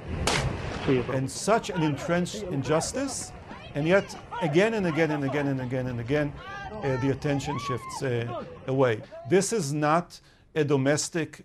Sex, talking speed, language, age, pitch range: male, 140 wpm, English, 50-69, 135-165 Hz